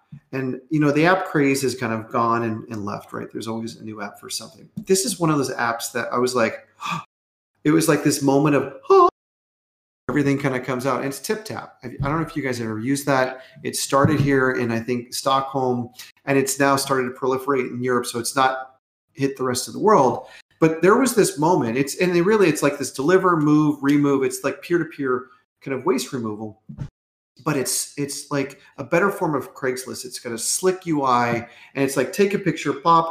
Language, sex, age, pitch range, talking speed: English, male, 40-59, 130-160 Hz, 230 wpm